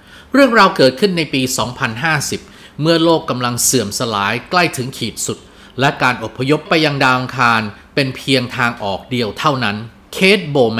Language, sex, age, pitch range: Thai, male, 30-49, 115-155 Hz